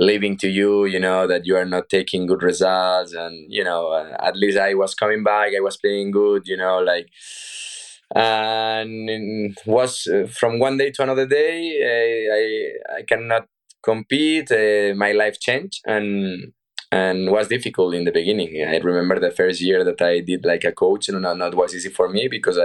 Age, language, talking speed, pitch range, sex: 20-39, English, 195 wpm, 95-125 Hz, male